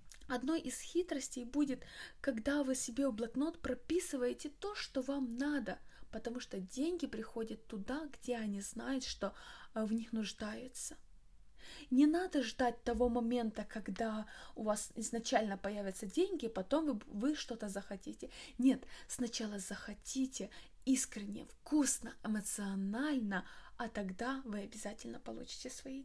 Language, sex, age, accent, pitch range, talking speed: Russian, female, 20-39, native, 210-260 Hz, 125 wpm